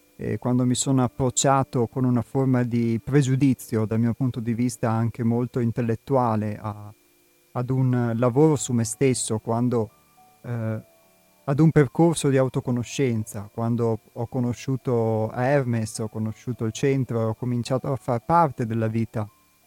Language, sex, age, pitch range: Italian, male, 30-49, 115-140 Hz